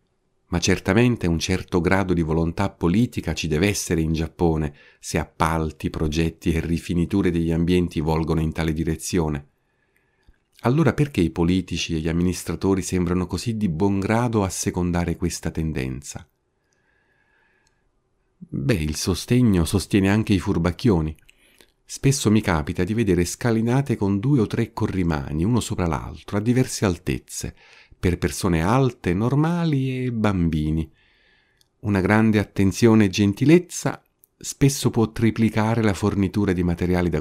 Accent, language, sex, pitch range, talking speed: native, Italian, male, 85-115 Hz, 135 wpm